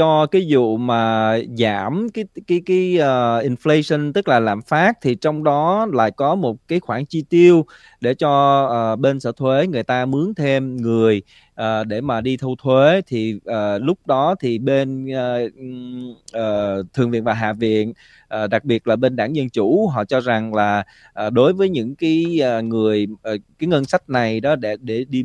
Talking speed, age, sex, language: 195 wpm, 20-39, male, Vietnamese